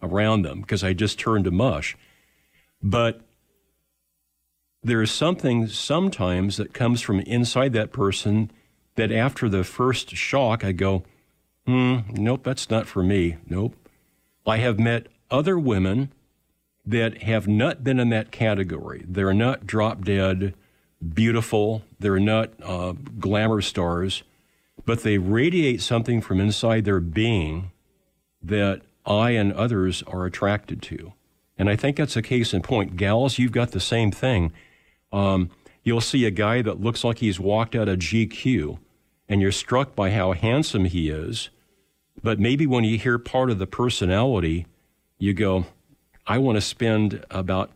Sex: male